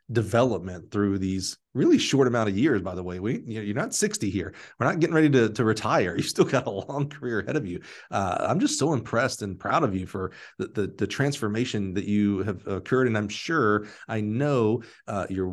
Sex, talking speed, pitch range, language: male, 230 wpm, 95-120 Hz, English